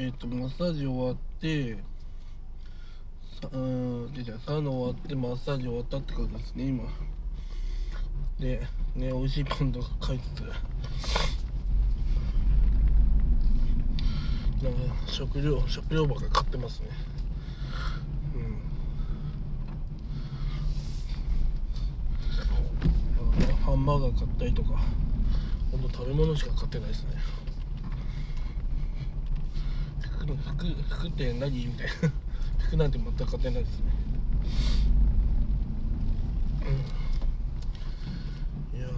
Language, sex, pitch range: Japanese, male, 115-145 Hz